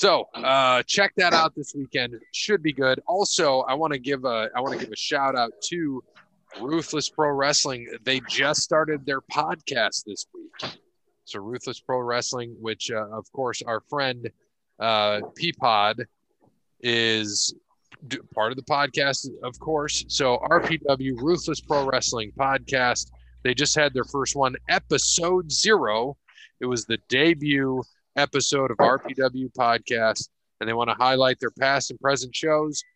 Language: English